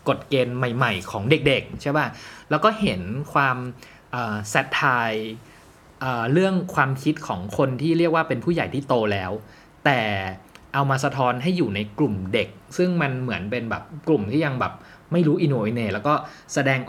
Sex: male